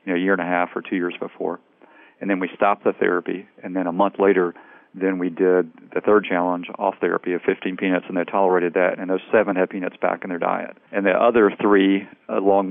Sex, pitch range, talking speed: male, 90-95 Hz, 230 wpm